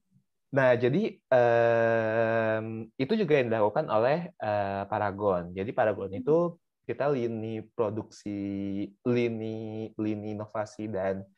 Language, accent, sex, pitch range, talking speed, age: Indonesian, native, male, 90-115 Hz, 95 wpm, 20-39